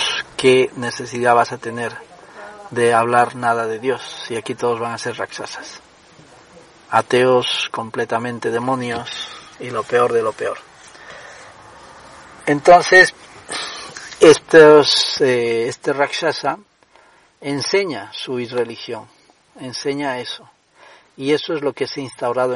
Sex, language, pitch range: male, Spanish, 120-140 Hz